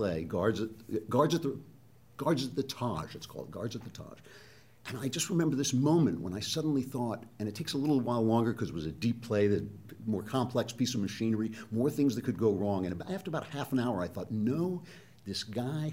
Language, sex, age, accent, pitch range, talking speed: English, male, 60-79, American, 115-155 Hz, 230 wpm